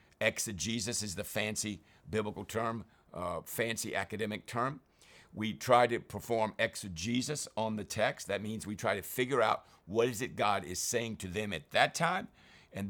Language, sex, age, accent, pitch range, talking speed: English, male, 50-69, American, 100-120 Hz, 170 wpm